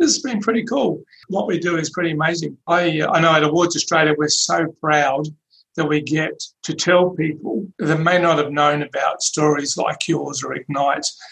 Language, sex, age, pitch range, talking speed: English, male, 40-59, 150-165 Hz, 200 wpm